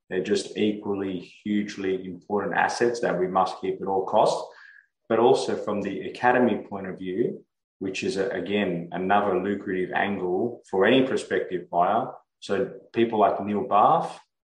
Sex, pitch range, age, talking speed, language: male, 95-120 Hz, 20-39, 155 wpm, English